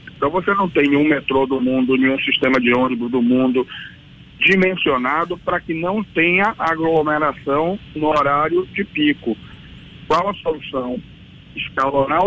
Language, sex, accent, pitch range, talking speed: Portuguese, male, Brazilian, 130-175 Hz, 135 wpm